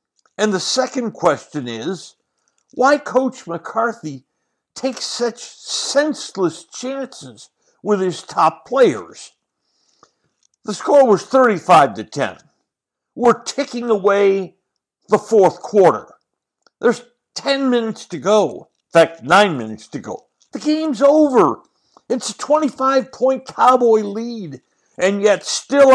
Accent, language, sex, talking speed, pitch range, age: American, English, male, 115 wpm, 185-260 Hz, 60-79